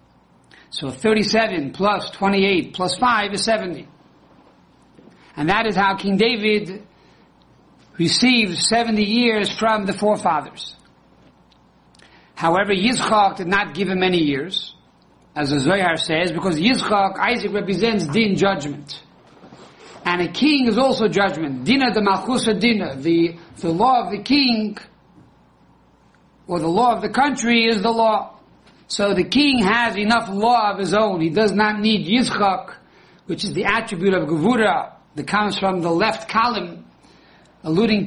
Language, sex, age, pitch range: English, male, 60-79, 180-225 Hz